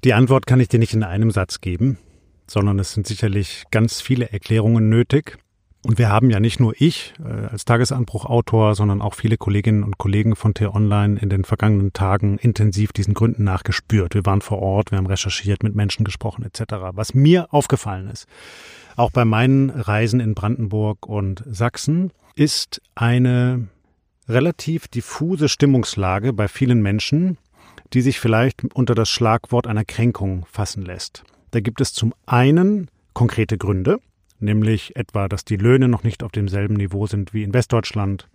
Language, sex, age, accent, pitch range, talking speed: German, male, 40-59, German, 105-125 Hz, 165 wpm